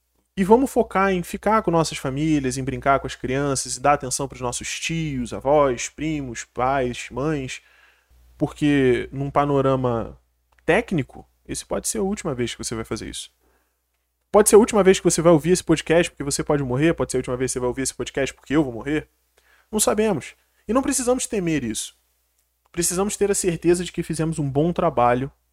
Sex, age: male, 20-39